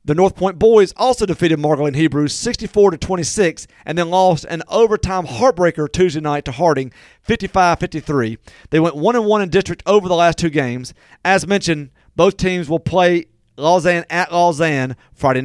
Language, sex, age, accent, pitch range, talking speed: English, male, 40-59, American, 155-195 Hz, 175 wpm